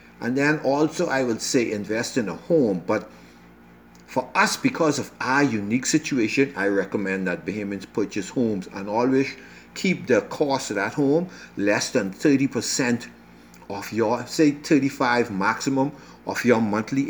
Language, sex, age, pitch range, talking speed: English, male, 60-79, 95-140 Hz, 150 wpm